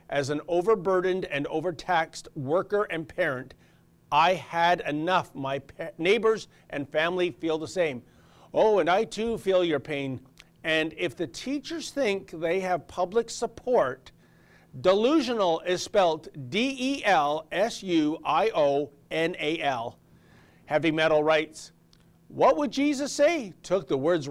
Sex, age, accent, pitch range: male, 50-69, American, 155-200 Hz